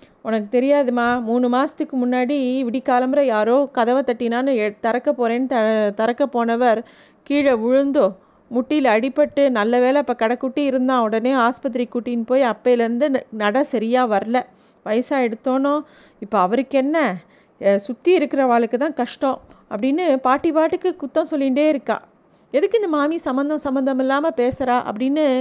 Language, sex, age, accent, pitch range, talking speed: Tamil, female, 30-49, native, 235-280 Hz, 135 wpm